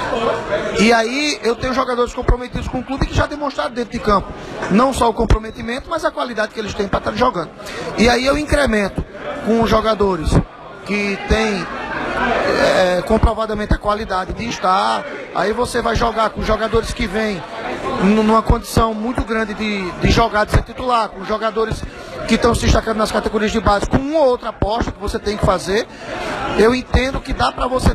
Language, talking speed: Portuguese, 190 wpm